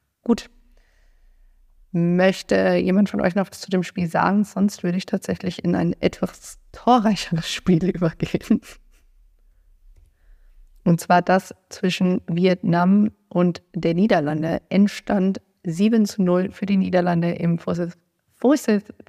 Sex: female